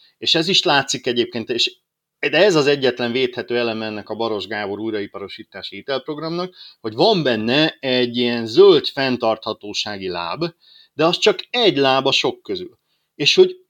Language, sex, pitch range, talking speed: Hungarian, male, 110-160 Hz, 150 wpm